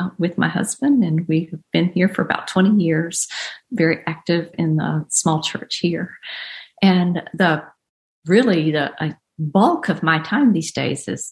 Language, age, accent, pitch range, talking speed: English, 50-69, American, 160-195 Hz, 160 wpm